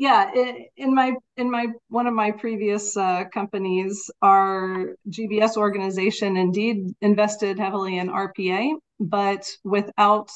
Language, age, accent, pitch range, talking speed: English, 40-59, American, 190-220 Hz, 125 wpm